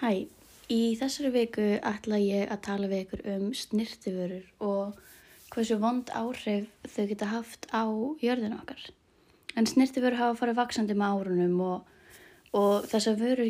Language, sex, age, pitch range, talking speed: English, female, 20-39, 210-230 Hz, 140 wpm